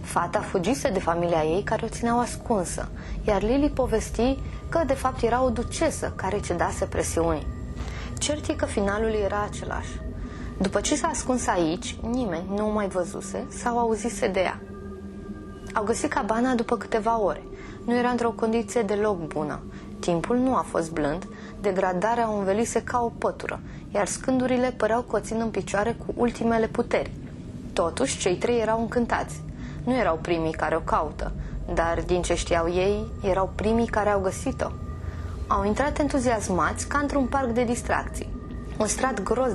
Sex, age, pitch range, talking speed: female, 20-39, 175-240 Hz, 160 wpm